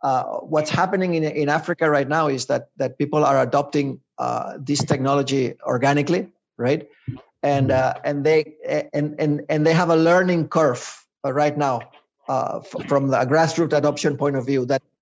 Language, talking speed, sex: English, 170 wpm, male